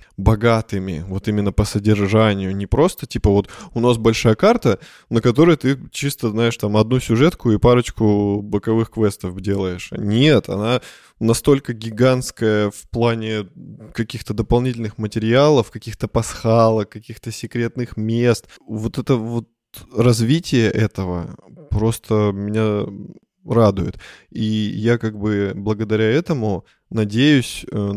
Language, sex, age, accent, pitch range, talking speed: Russian, male, 20-39, native, 100-115 Hz, 120 wpm